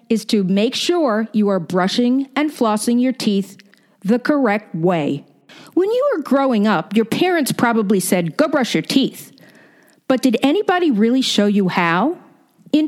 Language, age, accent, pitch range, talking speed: English, 50-69, American, 210-310 Hz, 165 wpm